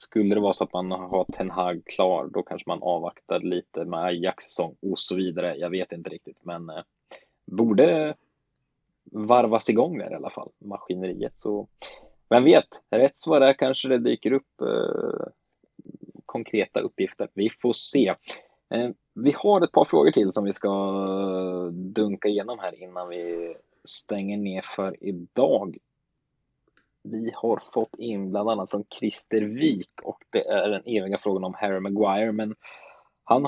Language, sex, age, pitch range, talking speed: Swedish, male, 20-39, 95-110 Hz, 160 wpm